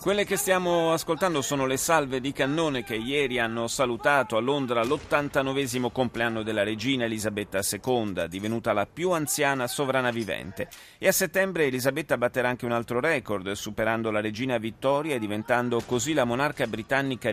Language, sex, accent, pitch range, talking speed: Italian, male, native, 110-140 Hz, 160 wpm